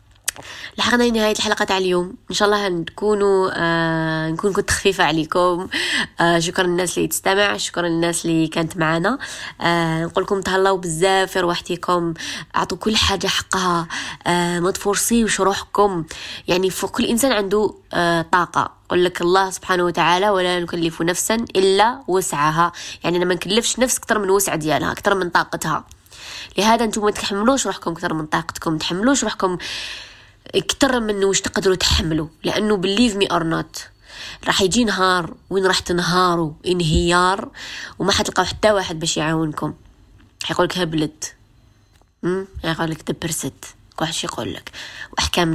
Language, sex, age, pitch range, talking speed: Arabic, female, 20-39, 165-195 Hz, 140 wpm